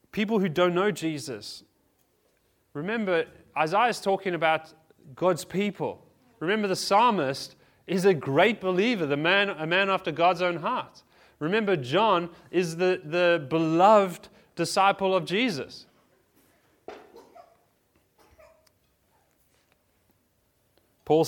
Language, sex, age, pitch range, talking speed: English, male, 30-49, 130-175 Hz, 105 wpm